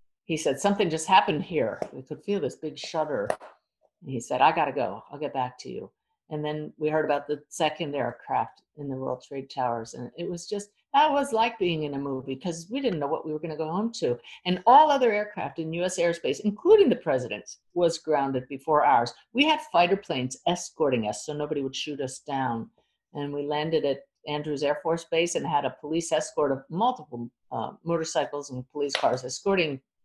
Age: 50-69